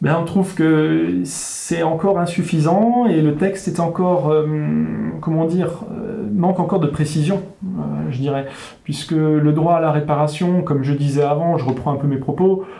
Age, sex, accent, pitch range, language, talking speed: 30-49, male, French, 135-175 Hz, French, 180 wpm